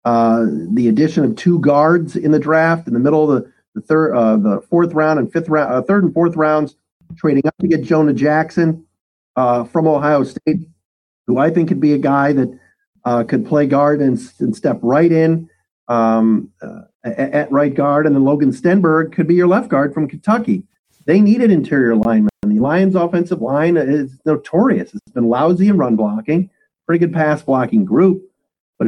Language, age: English, 50-69